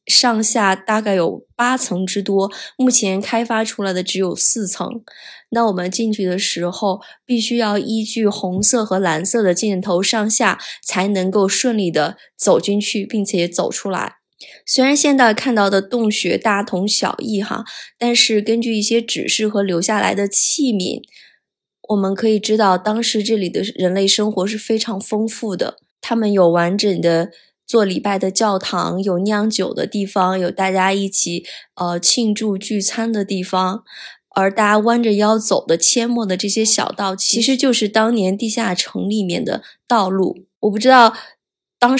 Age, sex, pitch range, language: 20-39, female, 190-225 Hz, Chinese